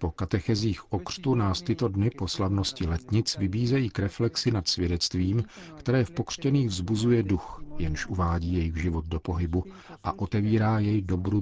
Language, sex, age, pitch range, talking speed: Czech, male, 50-69, 90-110 Hz, 150 wpm